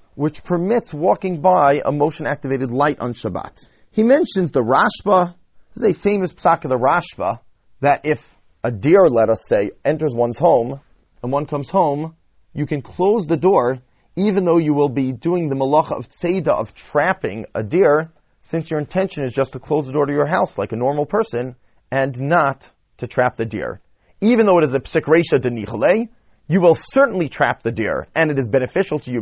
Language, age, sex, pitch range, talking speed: English, 30-49, male, 125-175 Hz, 195 wpm